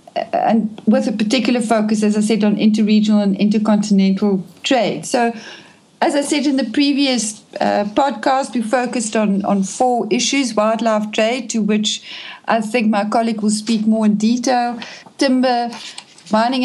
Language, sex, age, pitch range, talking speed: English, female, 60-79, 215-245 Hz, 155 wpm